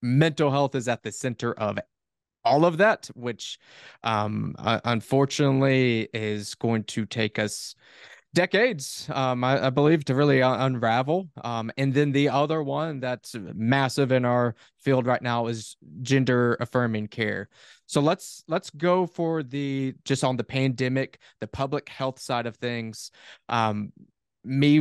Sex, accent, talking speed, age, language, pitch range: male, American, 150 wpm, 20-39, English, 115-140 Hz